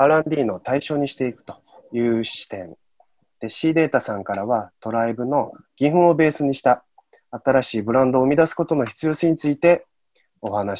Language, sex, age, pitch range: Japanese, male, 20-39, 110-150 Hz